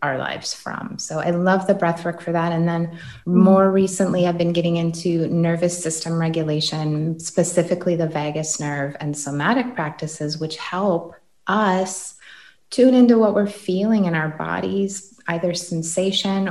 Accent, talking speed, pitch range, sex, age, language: American, 155 wpm, 160-195 Hz, female, 30-49, English